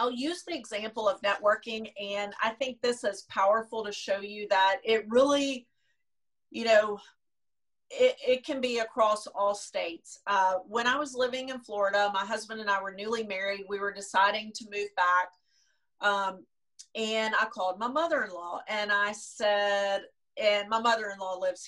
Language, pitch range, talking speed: English, 205-260 Hz, 165 wpm